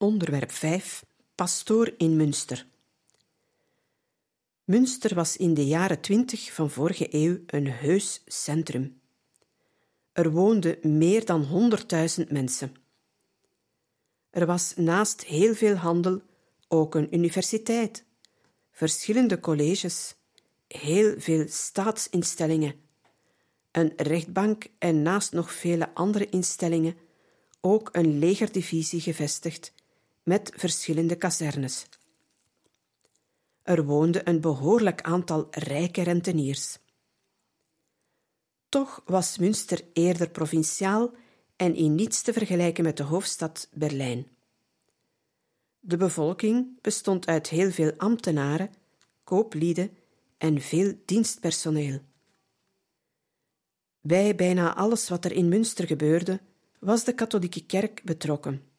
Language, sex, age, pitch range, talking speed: Dutch, female, 50-69, 155-195 Hz, 100 wpm